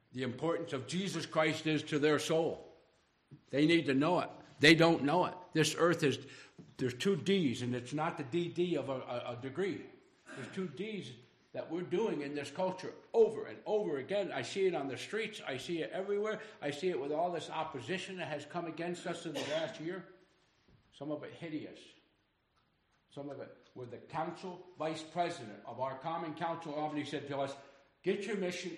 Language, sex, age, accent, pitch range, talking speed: English, male, 60-79, American, 130-180 Hz, 200 wpm